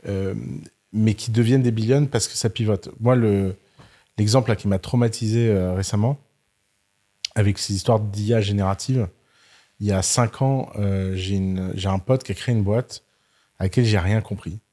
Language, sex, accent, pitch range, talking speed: French, male, French, 100-125 Hz, 185 wpm